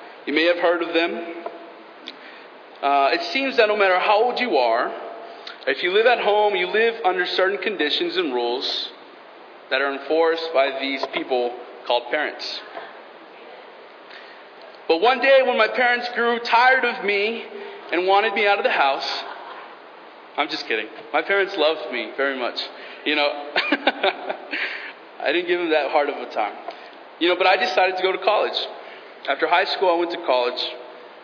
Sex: male